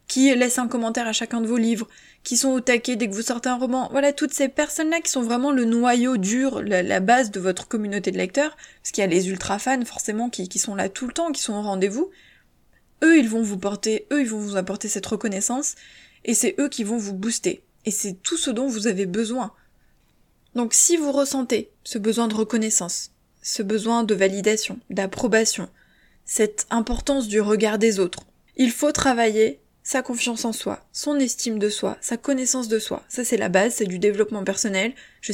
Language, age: French, 20-39